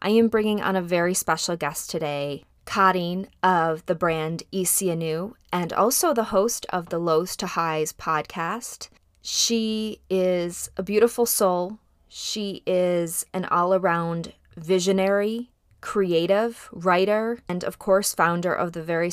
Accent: American